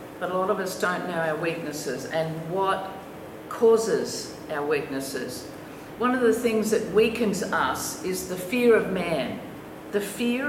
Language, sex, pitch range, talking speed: English, female, 200-250 Hz, 160 wpm